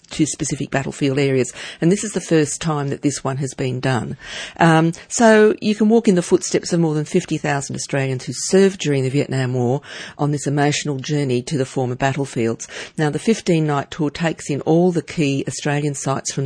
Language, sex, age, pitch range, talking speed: English, female, 50-69, 130-160 Hz, 200 wpm